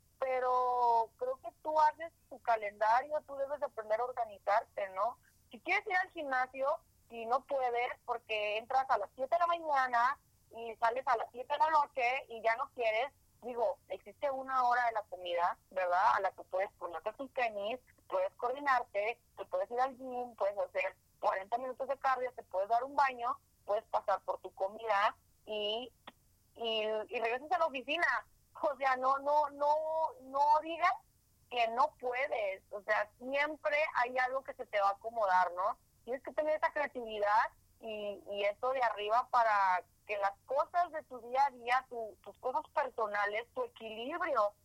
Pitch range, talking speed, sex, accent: 210-280 Hz, 180 wpm, female, Mexican